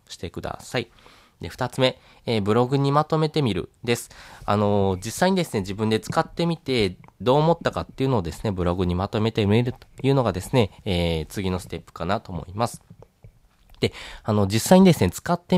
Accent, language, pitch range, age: native, Japanese, 95-135 Hz, 20-39